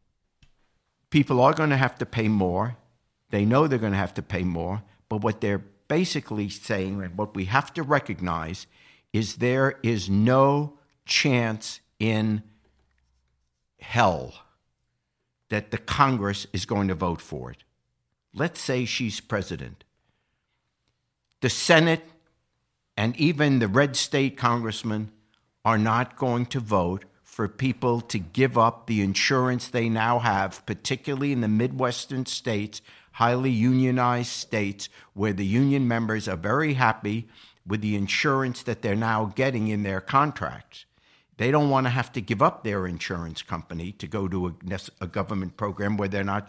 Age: 60-79